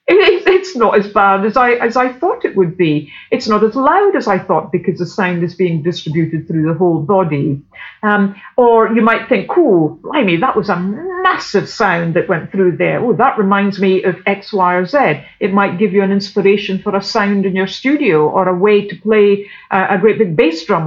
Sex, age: female, 50-69